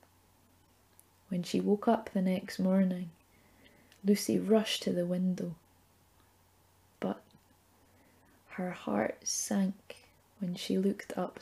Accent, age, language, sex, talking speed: British, 20-39, English, female, 105 wpm